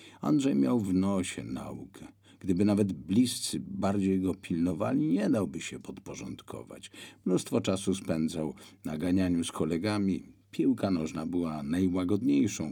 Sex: male